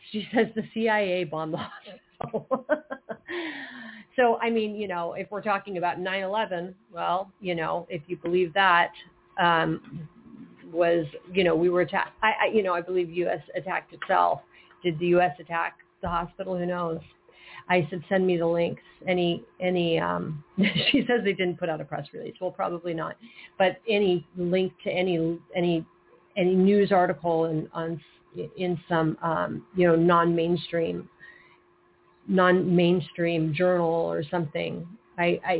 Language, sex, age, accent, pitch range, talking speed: English, female, 40-59, American, 170-195 Hz, 155 wpm